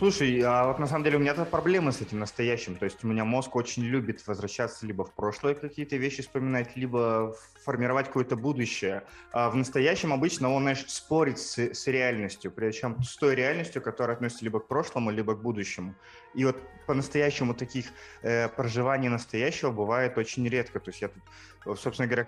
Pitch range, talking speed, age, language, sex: 115-135 Hz, 180 wpm, 20-39, Russian, male